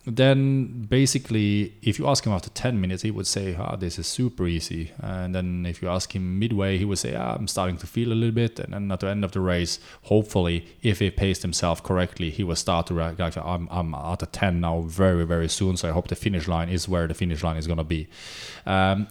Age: 30-49